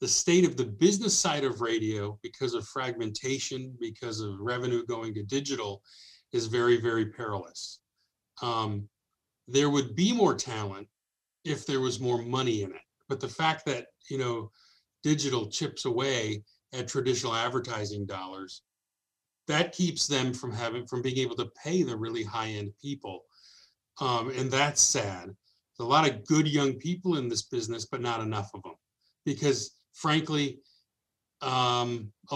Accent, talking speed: American, 155 wpm